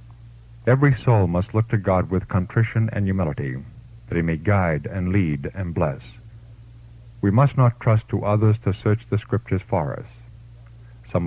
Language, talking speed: English, 165 wpm